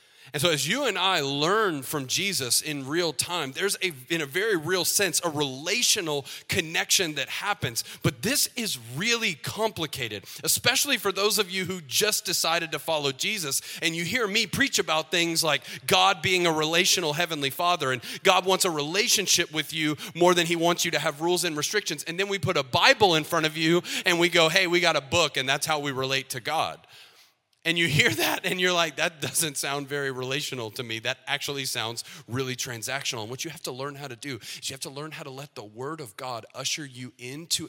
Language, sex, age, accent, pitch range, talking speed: English, male, 30-49, American, 130-175 Hz, 220 wpm